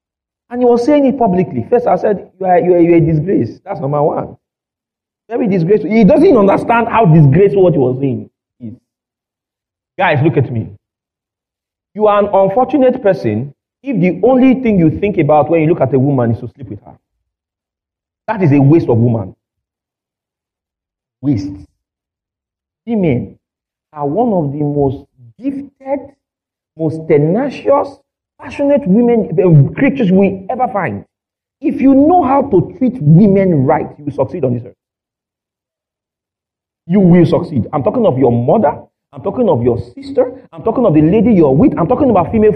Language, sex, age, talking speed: English, male, 40-59, 170 wpm